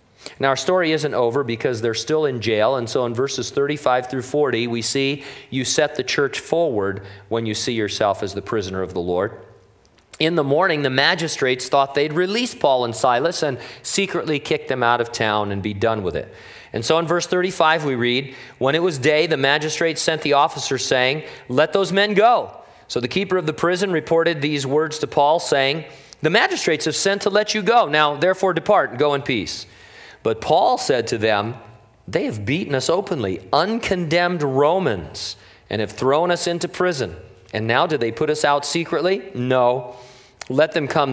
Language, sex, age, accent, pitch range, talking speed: English, male, 40-59, American, 115-165 Hz, 195 wpm